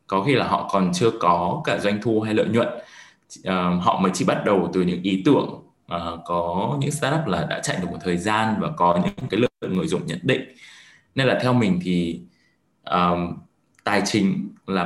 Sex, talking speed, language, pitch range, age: male, 195 wpm, Vietnamese, 90-115 Hz, 20-39